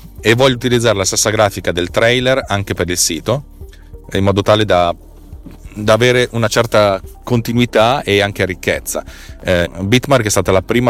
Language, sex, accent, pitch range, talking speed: Italian, male, native, 90-110 Hz, 165 wpm